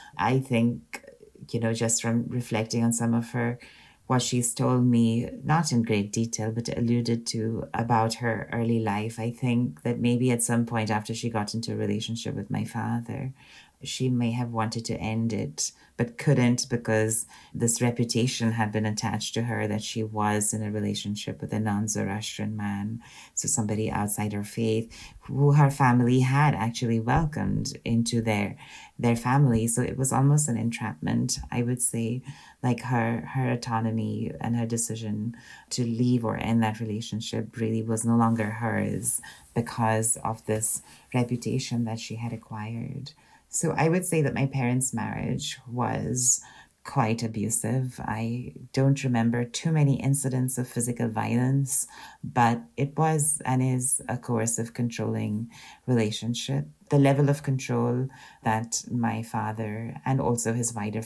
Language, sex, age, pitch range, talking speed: English, female, 30-49, 110-125 Hz, 155 wpm